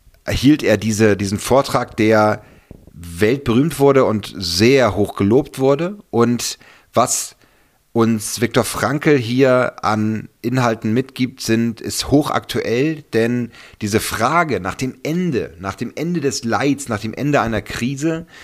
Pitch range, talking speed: 100-125 Hz, 125 wpm